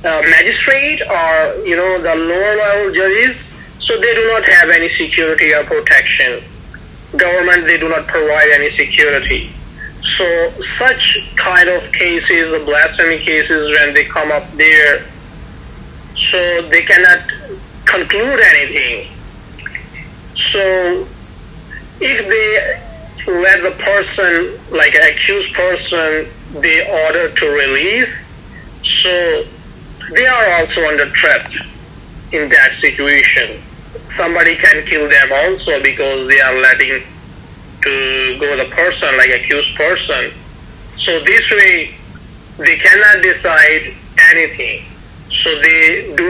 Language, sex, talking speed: English, male, 120 wpm